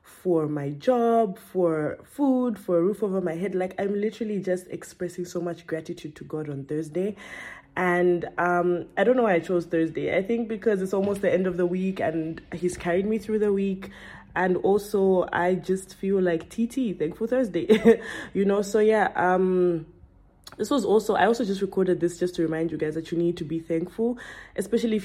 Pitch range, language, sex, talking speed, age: 170-195 Hz, English, female, 200 wpm, 20-39